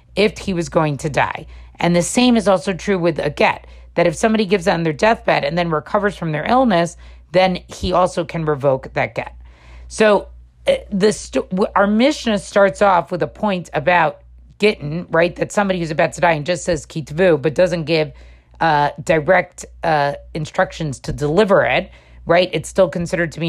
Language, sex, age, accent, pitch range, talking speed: English, female, 40-59, American, 155-205 Hz, 195 wpm